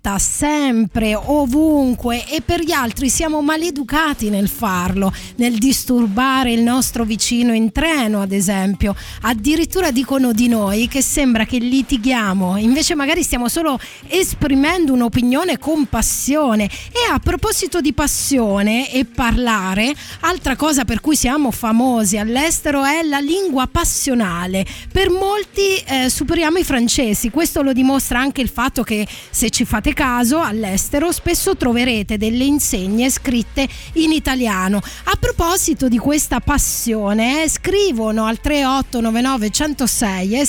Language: Italian